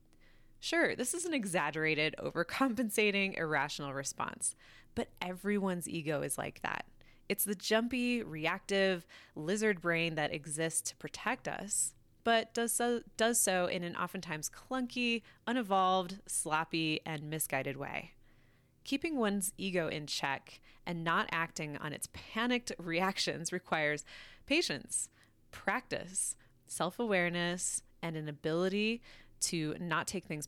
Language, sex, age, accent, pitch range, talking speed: English, female, 20-39, American, 155-215 Hz, 120 wpm